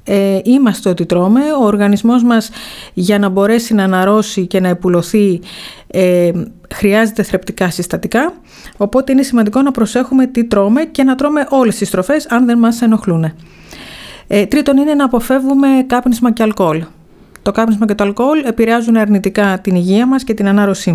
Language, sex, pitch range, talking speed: Greek, female, 185-230 Hz, 165 wpm